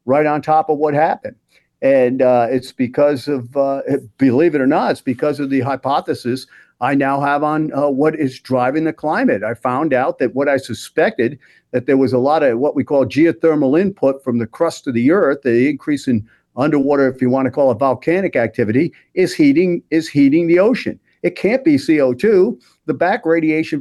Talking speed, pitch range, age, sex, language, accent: 200 wpm, 135-180 Hz, 50-69, male, English, American